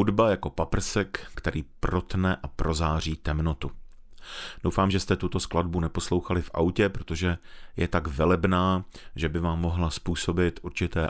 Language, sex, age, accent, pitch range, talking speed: Czech, male, 40-59, native, 85-105 Hz, 140 wpm